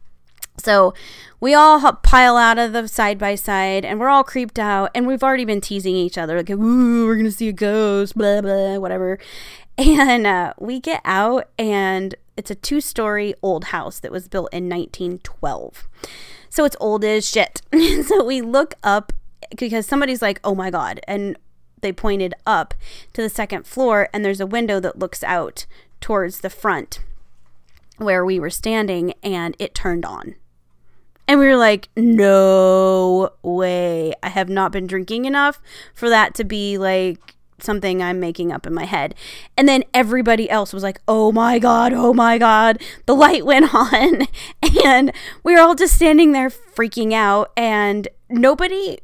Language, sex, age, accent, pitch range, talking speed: English, female, 20-39, American, 190-255 Hz, 175 wpm